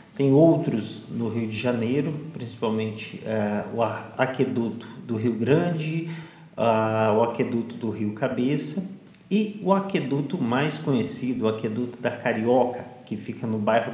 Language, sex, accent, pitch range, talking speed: Portuguese, male, Brazilian, 110-145 Hz, 130 wpm